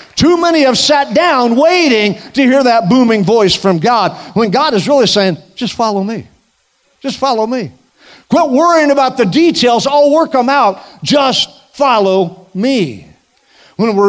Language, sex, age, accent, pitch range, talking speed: English, male, 50-69, American, 195-275 Hz, 160 wpm